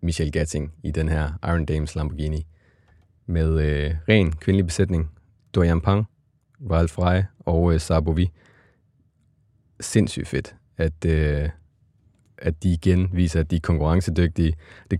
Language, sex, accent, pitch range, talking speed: Danish, male, native, 80-95 Hz, 120 wpm